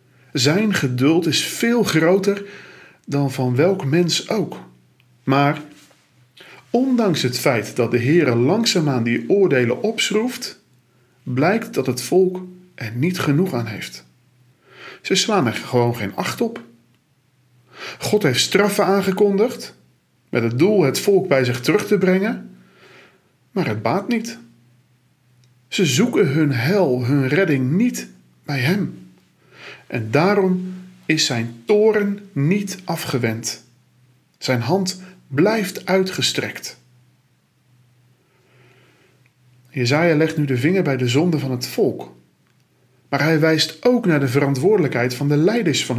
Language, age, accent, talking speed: Dutch, 40-59, Dutch, 125 wpm